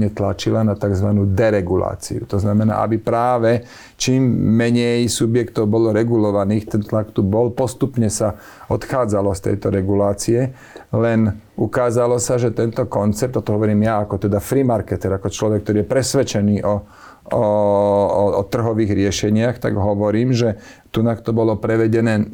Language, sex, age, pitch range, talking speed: Slovak, male, 40-59, 105-120 Hz, 145 wpm